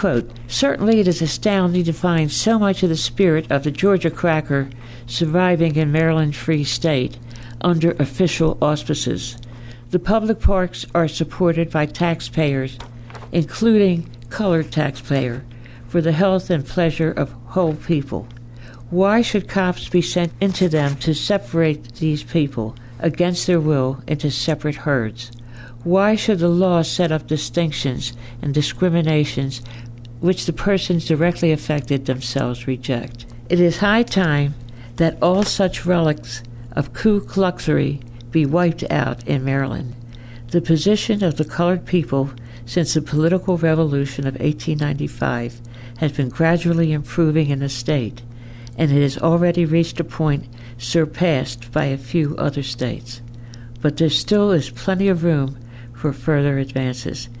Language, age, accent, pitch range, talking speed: English, 60-79, American, 125-170 Hz, 140 wpm